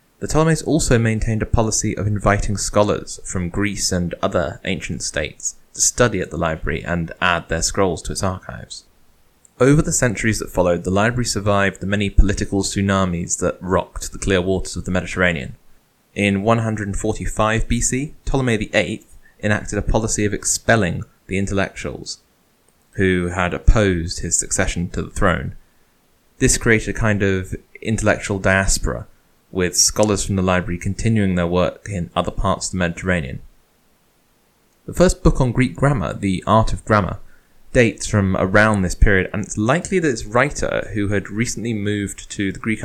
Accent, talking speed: British, 160 wpm